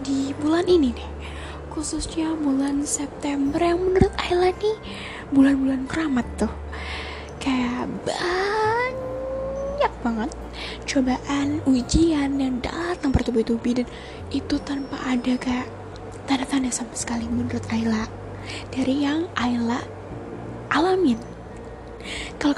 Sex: female